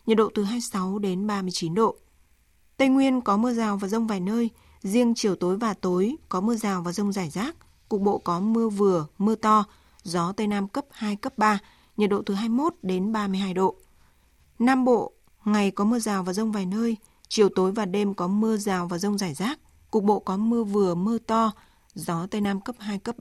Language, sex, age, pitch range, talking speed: Vietnamese, female, 20-39, 195-225 Hz, 215 wpm